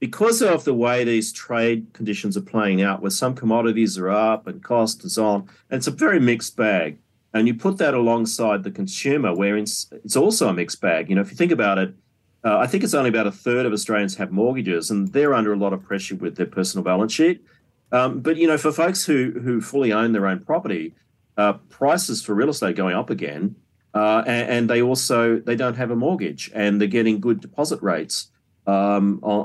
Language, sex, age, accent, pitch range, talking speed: English, male, 40-59, Australian, 100-125 Hz, 220 wpm